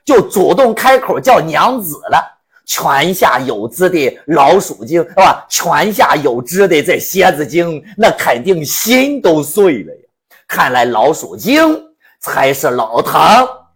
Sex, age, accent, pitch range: male, 50-69, native, 165-270 Hz